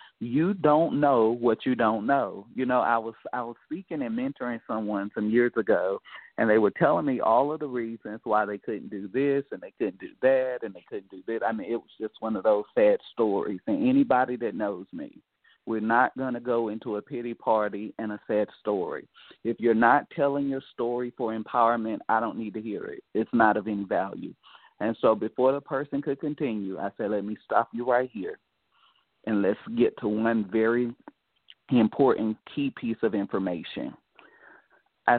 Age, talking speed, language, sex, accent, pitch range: 40-59, 200 wpm, English, male, American, 110-140 Hz